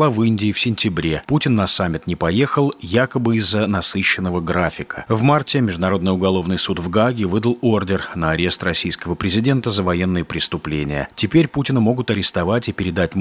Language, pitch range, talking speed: Russian, 95-130 Hz, 160 wpm